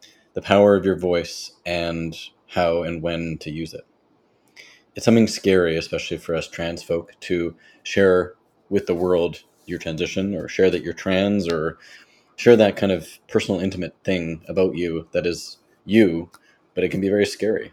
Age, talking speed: 30-49, 175 wpm